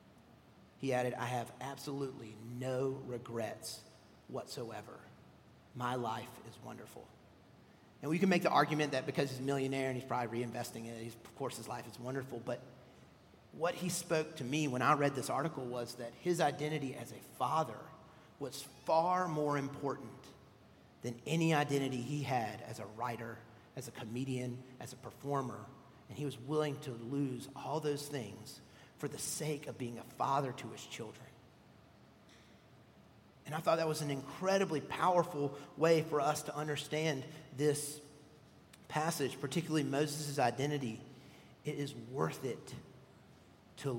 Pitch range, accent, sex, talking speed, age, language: 125-150 Hz, American, male, 155 wpm, 40-59, English